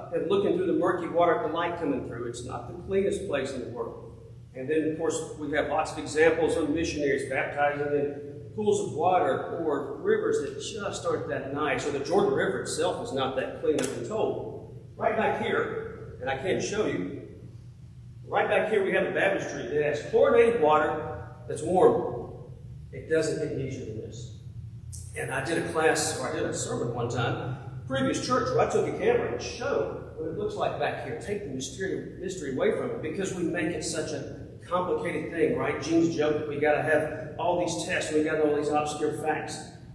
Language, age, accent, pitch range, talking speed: English, 50-69, American, 130-205 Hz, 210 wpm